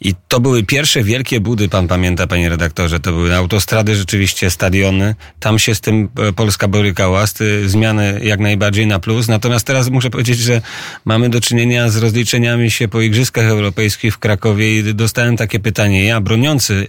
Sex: male